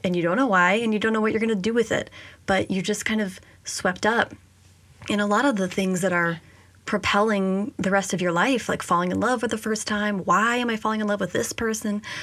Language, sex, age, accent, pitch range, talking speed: English, female, 20-39, American, 185-215 Hz, 265 wpm